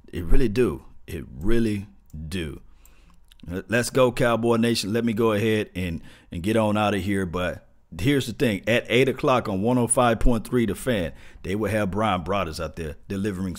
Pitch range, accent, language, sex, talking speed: 90-115 Hz, American, English, male, 175 wpm